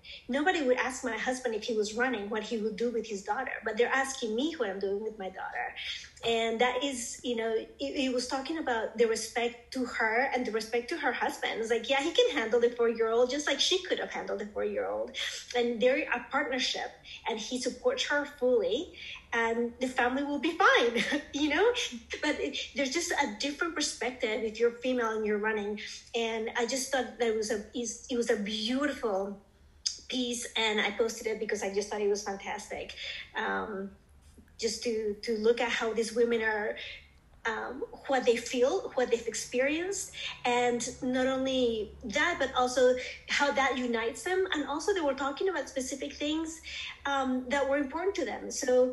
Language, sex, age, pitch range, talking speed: English, female, 30-49, 225-275 Hz, 190 wpm